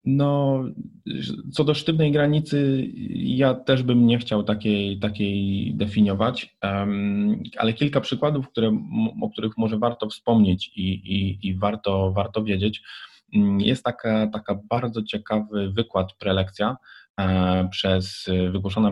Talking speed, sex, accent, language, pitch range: 115 wpm, male, native, Polish, 95-110 Hz